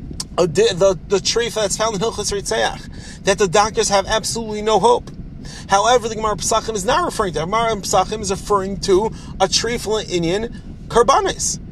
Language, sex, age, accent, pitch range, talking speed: English, male, 30-49, American, 190-230 Hz, 180 wpm